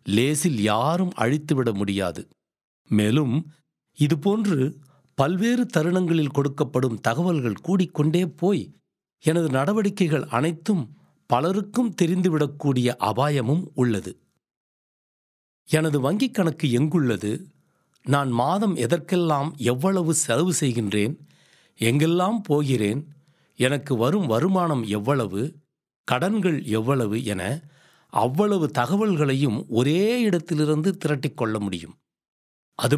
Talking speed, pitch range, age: 80 wpm, 125-175 Hz, 60-79